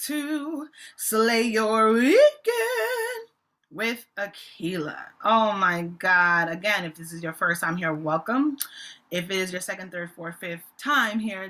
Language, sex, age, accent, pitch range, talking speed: English, female, 20-39, American, 165-220 Hz, 145 wpm